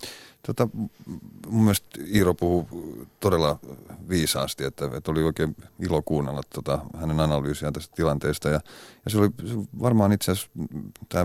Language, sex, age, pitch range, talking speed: Finnish, male, 30-49, 80-100 Hz, 140 wpm